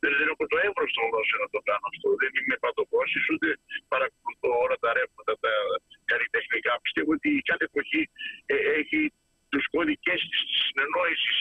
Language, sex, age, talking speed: Greek, male, 50-69, 160 wpm